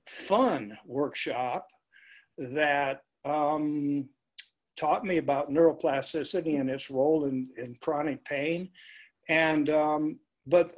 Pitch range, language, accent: 140-180 Hz, English, American